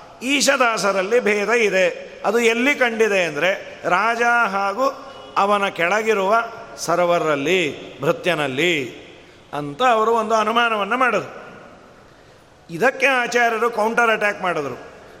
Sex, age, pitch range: male, 40-59, 175-230 Hz